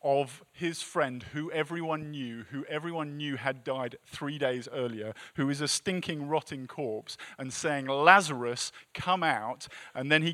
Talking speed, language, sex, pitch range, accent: 165 wpm, English, male, 125-160 Hz, British